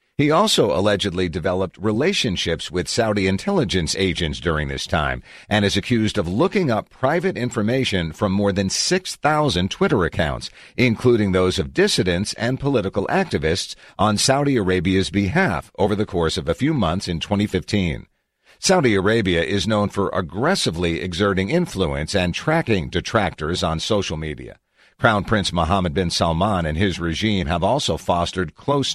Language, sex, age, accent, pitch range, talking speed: English, male, 50-69, American, 90-115 Hz, 150 wpm